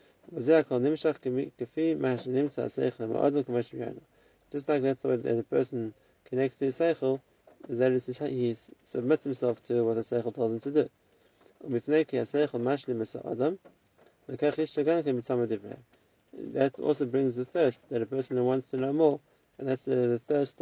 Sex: male